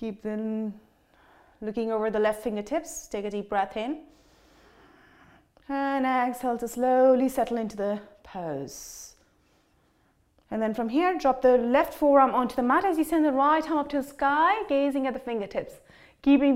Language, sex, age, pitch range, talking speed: English, female, 30-49, 230-295 Hz, 165 wpm